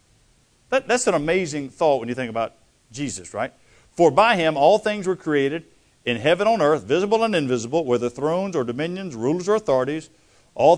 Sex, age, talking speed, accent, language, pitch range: male, 50-69, 190 wpm, American, English, 125-175 Hz